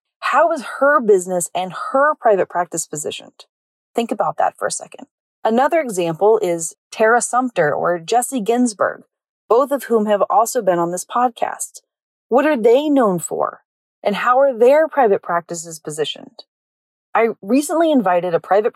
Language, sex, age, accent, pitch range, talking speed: English, female, 30-49, American, 180-265 Hz, 155 wpm